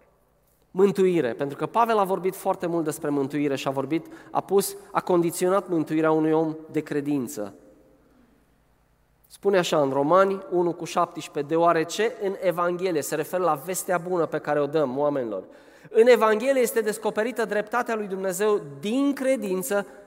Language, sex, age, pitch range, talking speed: Romanian, male, 20-39, 165-230 Hz, 155 wpm